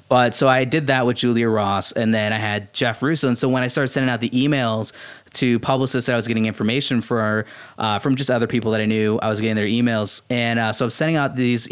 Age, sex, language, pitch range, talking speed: 20-39, male, English, 110-135 Hz, 260 wpm